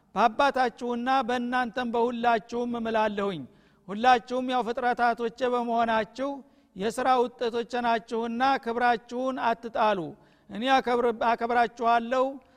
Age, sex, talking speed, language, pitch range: 50-69, male, 65 wpm, Amharic, 220-245 Hz